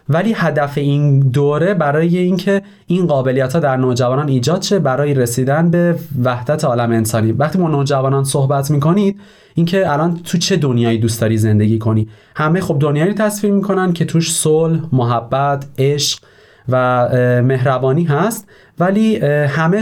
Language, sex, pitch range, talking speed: Persian, male, 125-175 Hz, 150 wpm